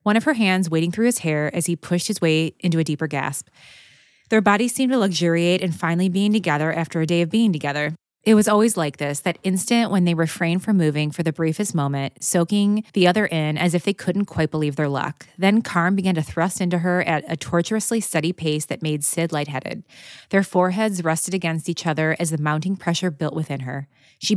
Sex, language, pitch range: female, English, 155-190 Hz